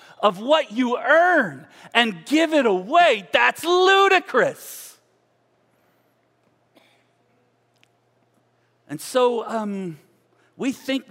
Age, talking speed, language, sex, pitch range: 40-59, 80 wpm, English, male, 185-265 Hz